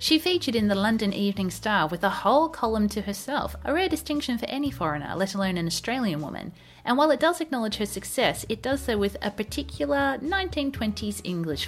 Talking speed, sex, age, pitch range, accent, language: 200 wpm, female, 30-49, 175-265 Hz, Australian, English